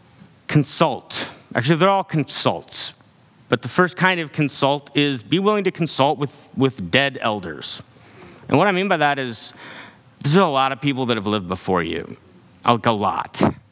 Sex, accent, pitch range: male, American, 115-145 Hz